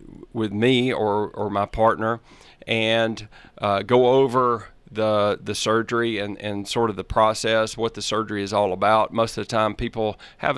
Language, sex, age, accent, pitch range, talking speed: English, male, 40-59, American, 105-120 Hz, 175 wpm